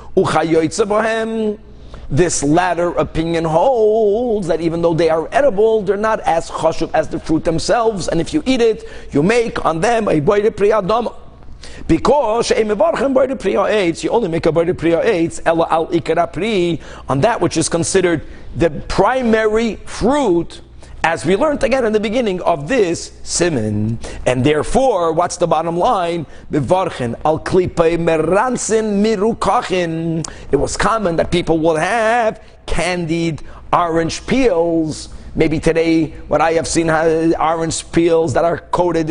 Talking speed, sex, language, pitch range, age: 130 wpm, male, English, 160-215 Hz, 50-69